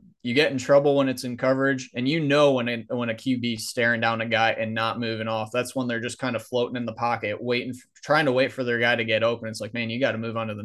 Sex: male